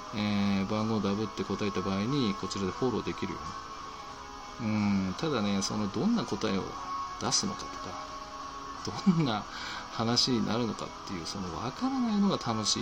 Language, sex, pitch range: Japanese, male, 95-120 Hz